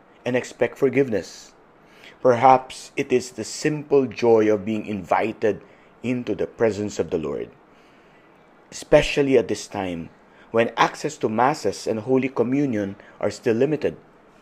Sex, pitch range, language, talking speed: male, 100-135 Hz, English, 135 wpm